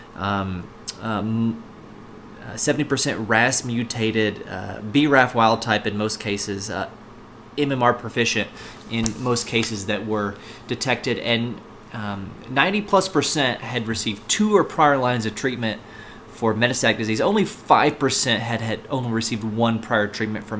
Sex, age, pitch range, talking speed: male, 30-49, 110-135 Hz, 140 wpm